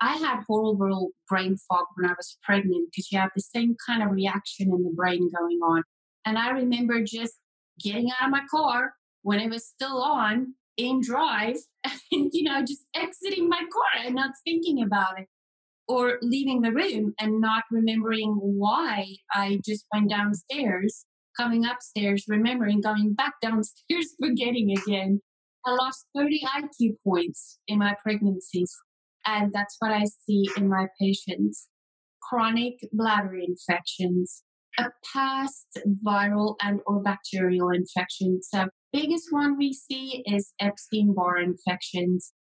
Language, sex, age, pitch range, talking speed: English, female, 30-49, 195-245 Hz, 145 wpm